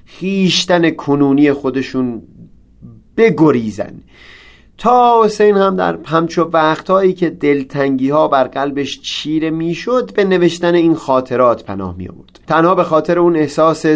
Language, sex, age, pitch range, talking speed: Persian, male, 30-49, 125-175 Hz, 125 wpm